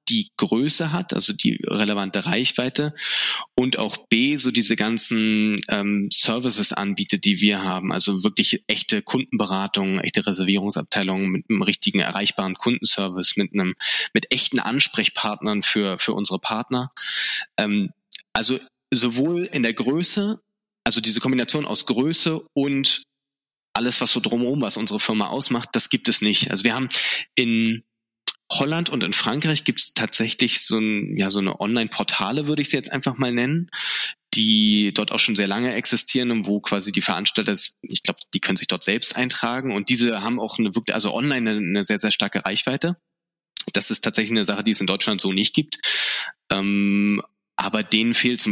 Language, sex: German, male